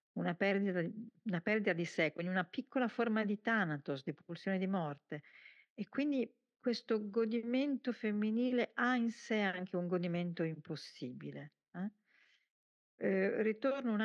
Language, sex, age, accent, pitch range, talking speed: Italian, female, 50-69, native, 165-230 Hz, 130 wpm